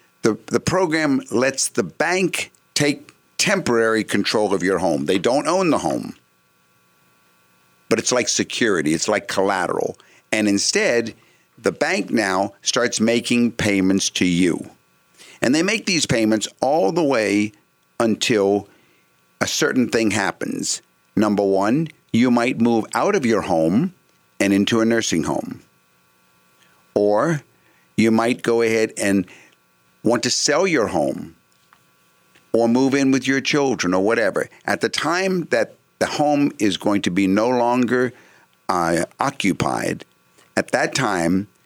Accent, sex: American, male